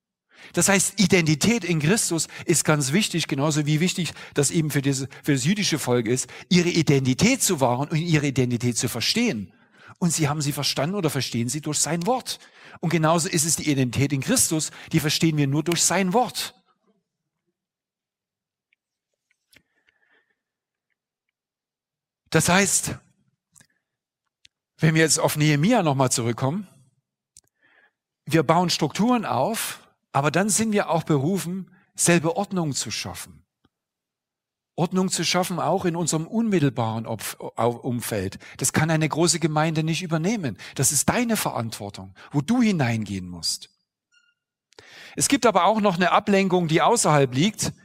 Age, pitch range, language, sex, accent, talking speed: 50-69, 140-185 Hz, German, male, German, 135 wpm